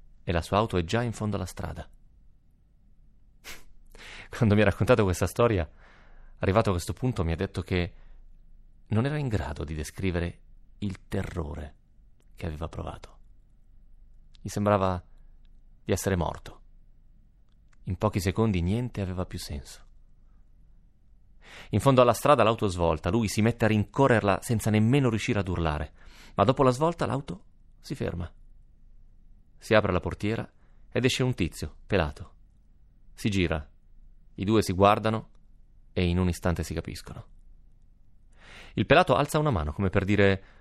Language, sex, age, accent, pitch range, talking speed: Italian, male, 30-49, native, 85-105 Hz, 145 wpm